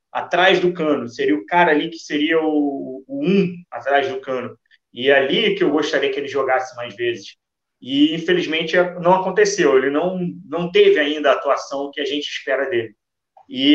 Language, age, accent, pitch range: Portuguese, 30-49, Brazilian, 140-210 Hz